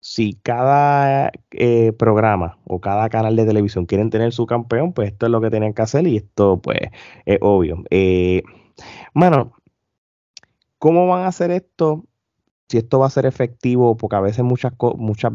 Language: Spanish